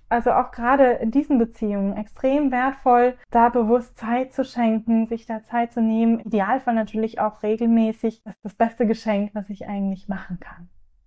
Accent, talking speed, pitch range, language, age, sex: German, 180 wpm, 220-275 Hz, German, 20-39, female